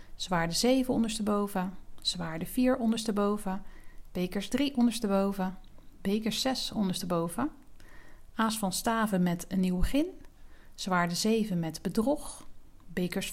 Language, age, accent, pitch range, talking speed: Dutch, 40-59, Dutch, 190-240 Hz, 110 wpm